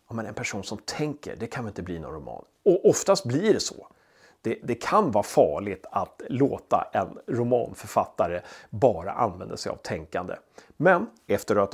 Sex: male